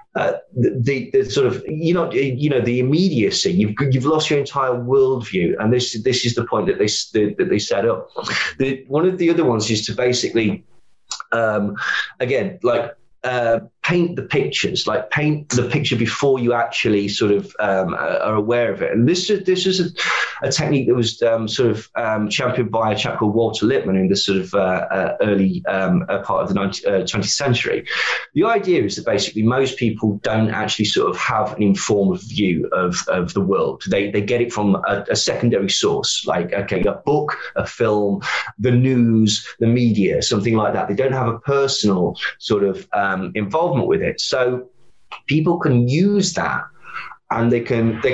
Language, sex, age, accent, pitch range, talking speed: English, male, 20-39, British, 105-135 Hz, 195 wpm